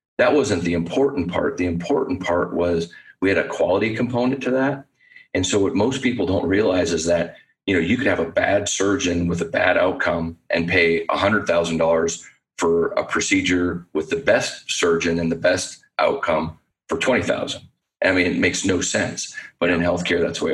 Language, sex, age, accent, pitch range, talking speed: English, male, 40-59, American, 85-90 Hz, 200 wpm